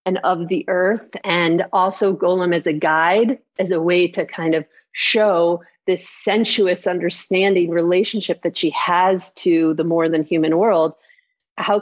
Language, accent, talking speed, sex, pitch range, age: English, American, 155 wpm, female, 165-195 Hz, 40-59